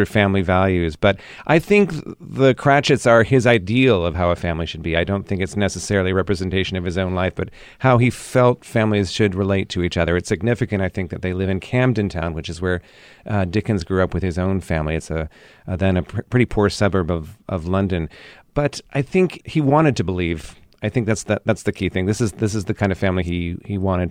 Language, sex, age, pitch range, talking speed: English, male, 40-59, 90-110 Hz, 240 wpm